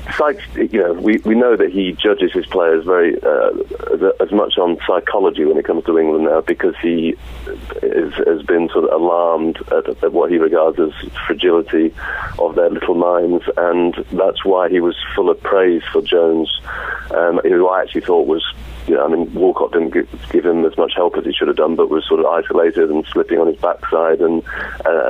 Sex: male